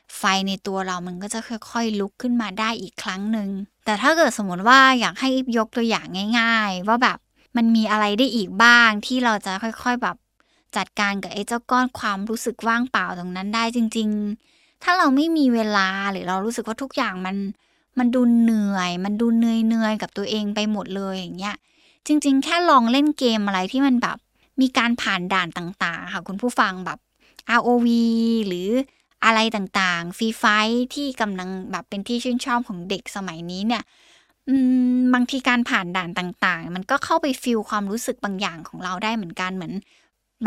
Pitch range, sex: 195-250 Hz, female